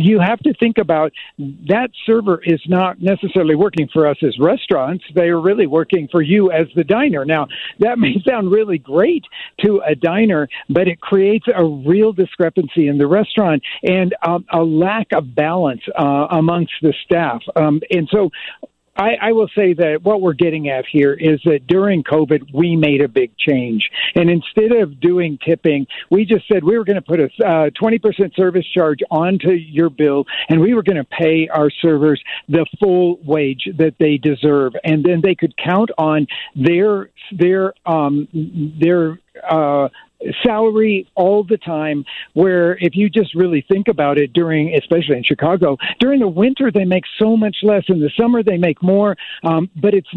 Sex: male